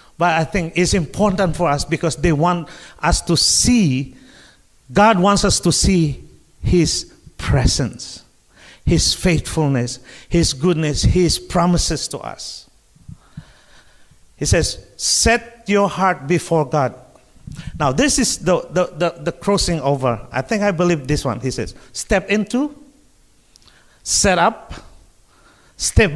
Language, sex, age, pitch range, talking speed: English, male, 50-69, 120-175 Hz, 125 wpm